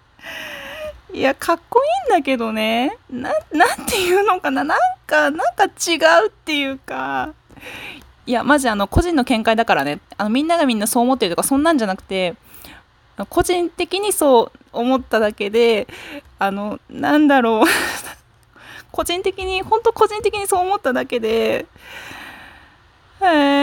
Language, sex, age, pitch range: Japanese, female, 20-39, 230-350 Hz